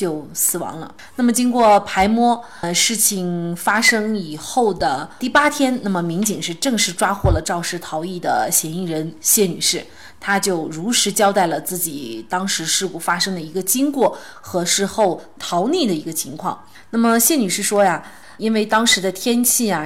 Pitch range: 175-235 Hz